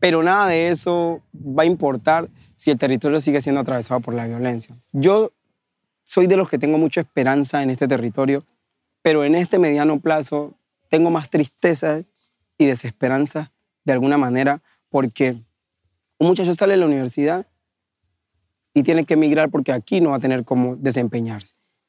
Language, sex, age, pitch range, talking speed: English, male, 30-49, 130-160 Hz, 160 wpm